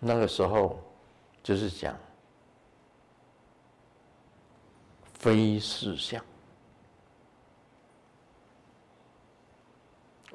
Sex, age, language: male, 60-79, Chinese